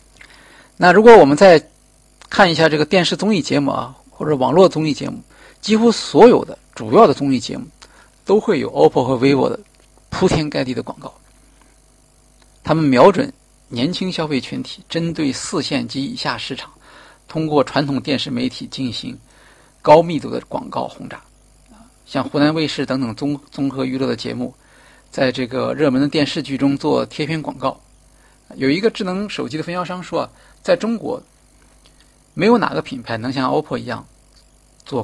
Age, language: 50-69, Chinese